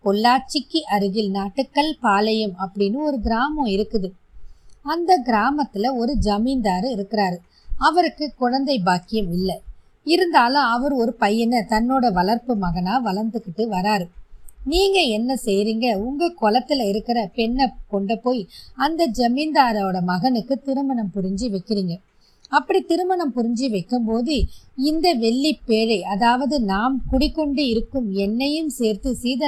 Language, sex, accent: Tamil, female, native